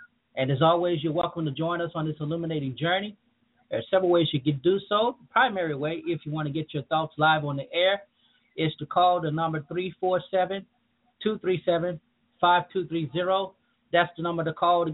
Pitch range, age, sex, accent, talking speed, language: 145-175 Hz, 30-49, male, American, 185 wpm, English